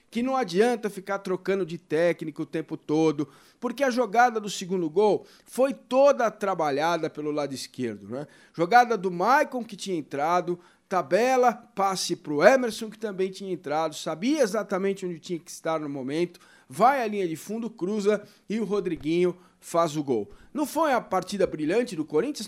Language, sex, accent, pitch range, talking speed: Portuguese, male, Brazilian, 175-235 Hz, 175 wpm